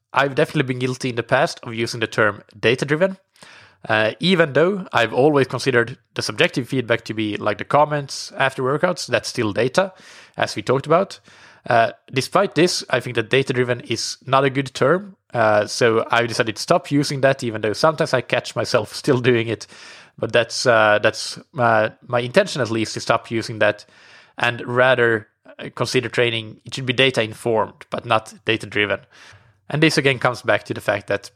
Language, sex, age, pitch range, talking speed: English, male, 20-39, 110-135 Hz, 185 wpm